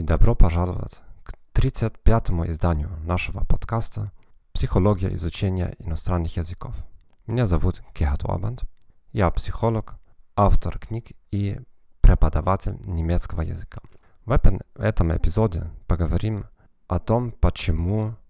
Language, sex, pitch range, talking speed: Russian, male, 85-110 Hz, 100 wpm